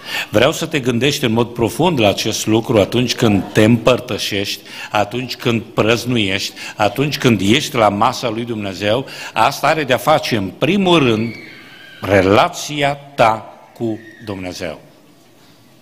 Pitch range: 110-135 Hz